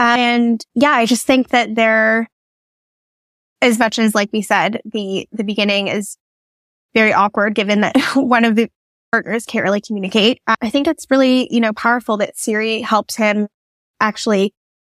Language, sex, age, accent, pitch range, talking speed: English, female, 10-29, American, 205-240 Hz, 170 wpm